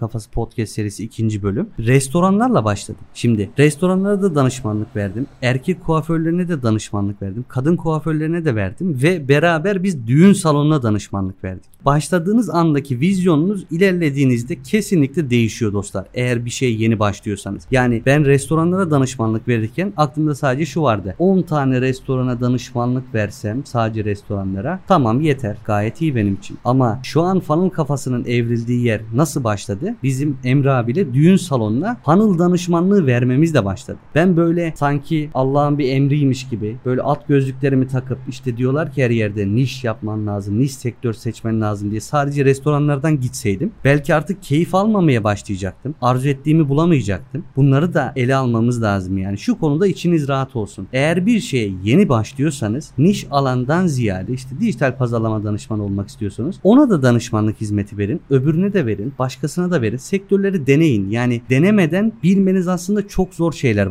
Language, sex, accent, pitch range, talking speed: Turkish, male, native, 115-165 Hz, 150 wpm